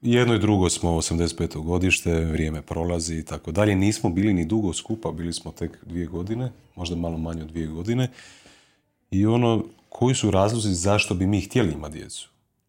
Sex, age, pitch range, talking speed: male, 30-49, 85-105 Hz, 180 wpm